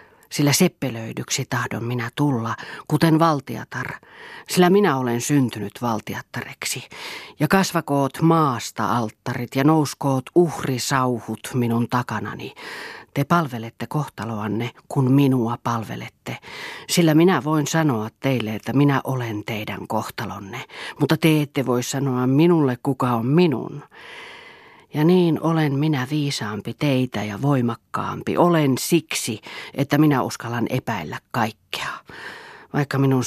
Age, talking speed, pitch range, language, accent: 40-59, 115 wpm, 115-150 Hz, Finnish, native